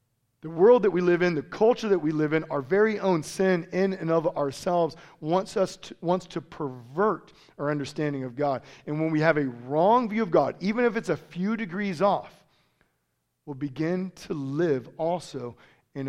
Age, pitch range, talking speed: 40-59, 150-200 Hz, 195 wpm